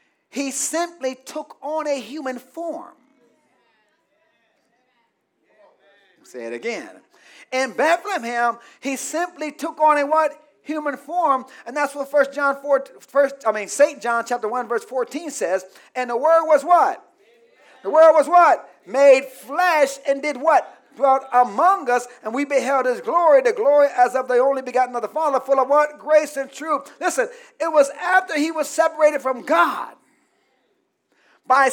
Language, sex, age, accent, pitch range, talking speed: English, male, 40-59, American, 270-330 Hz, 160 wpm